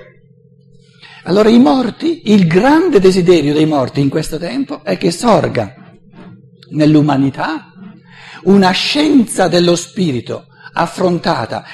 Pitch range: 135-175 Hz